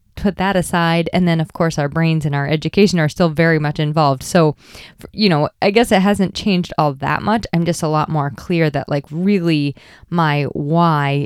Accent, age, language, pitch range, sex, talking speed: American, 20-39, English, 150-185 Hz, female, 210 wpm